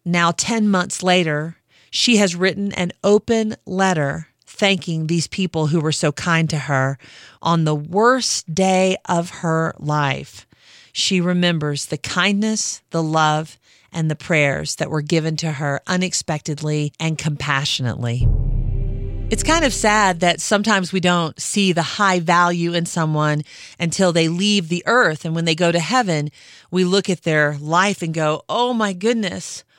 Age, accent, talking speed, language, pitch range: 40-59, American, 155 wpm, English, 155-195 Hz